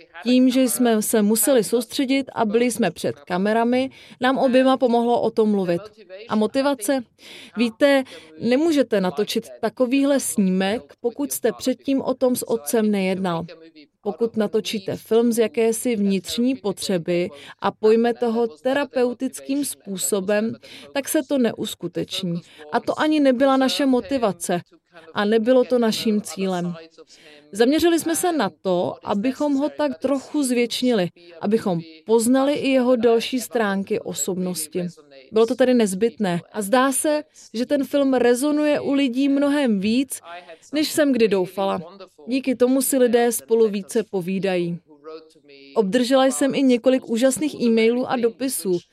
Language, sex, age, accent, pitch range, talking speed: Czech, female, 30-49, native, 190-260 Hz, 135 wpm